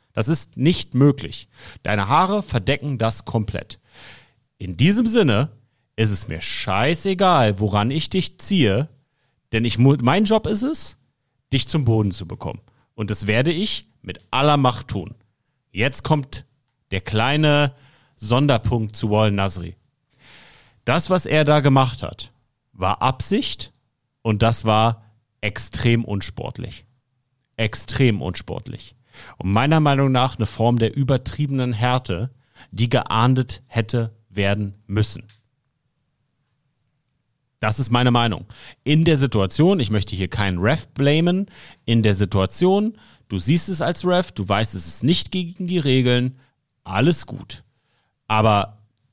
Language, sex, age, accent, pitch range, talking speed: German, male, 40-59, German, 110-140 Hz, 130 wpm